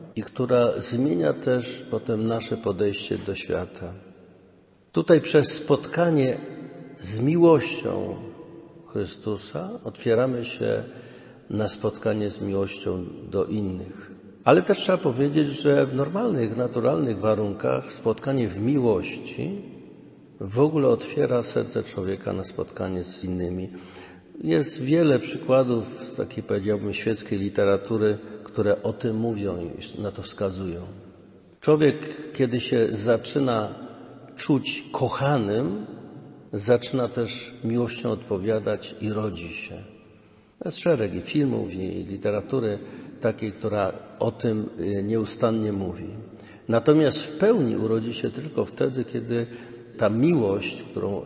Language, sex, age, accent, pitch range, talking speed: Polish, male, 50-69, native, 100-125 Hz, 110 wpm